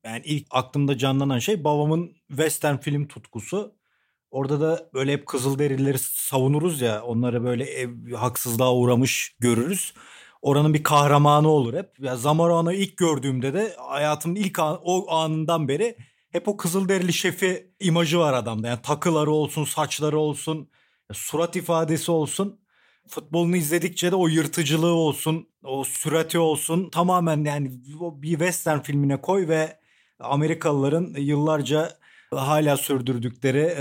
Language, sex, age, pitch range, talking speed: Turkish, male, 40-59, 130-160 Hz, 135 wpm